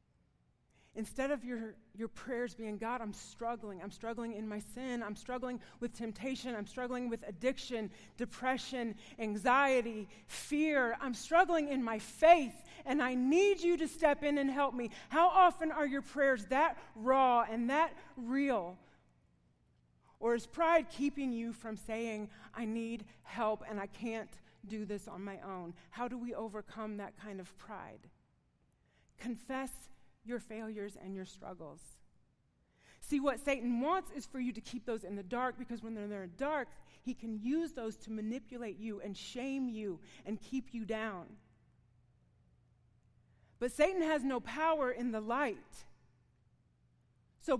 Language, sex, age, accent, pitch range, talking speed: English, female, 40-59, American, 220-270 Hz, 155 wpm